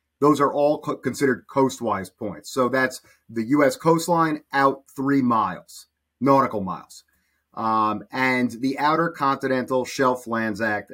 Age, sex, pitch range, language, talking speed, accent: 30-49, male, 115-145 Hz, English, 135 wpm, American